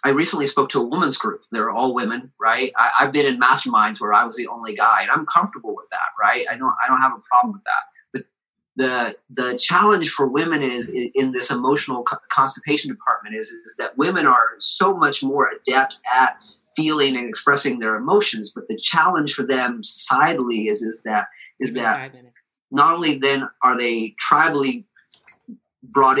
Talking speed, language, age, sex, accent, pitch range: 190 wpm, English, 30-49, male, American, 120-145 Hz